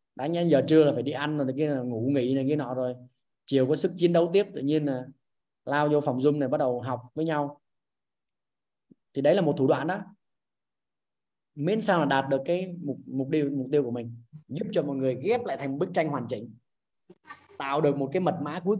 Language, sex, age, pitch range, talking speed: Vietnamese, male, 20-39, 130-170 Hz, 235 wpm